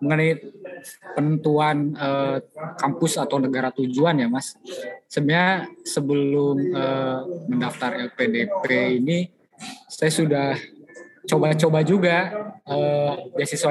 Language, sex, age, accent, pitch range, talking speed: Indonesian, male, 20-39, native, 145-190 Hz, 90 wpm